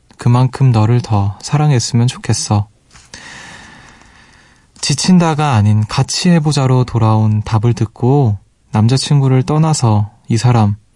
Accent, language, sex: native, Korean, male